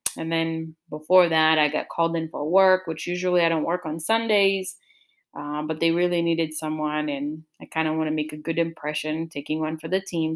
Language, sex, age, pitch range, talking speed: English, female, 20-39, 160-195 Hz, 220 wpm